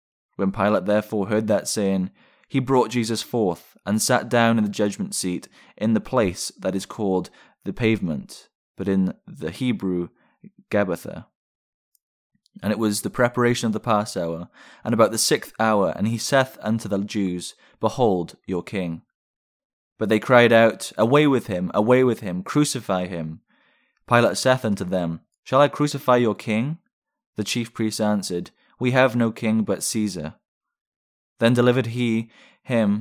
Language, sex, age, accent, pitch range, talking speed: English, male, 20-39, British, 95-120 Hz, 160 wpm